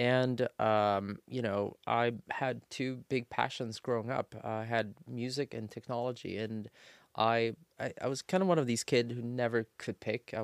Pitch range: 110-125 Hz